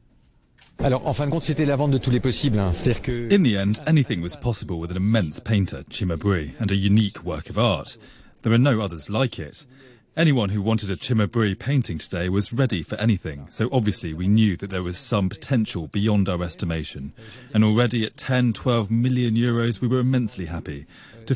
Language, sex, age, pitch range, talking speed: English, male, 30-49, 100-120 Hz, 165 wpm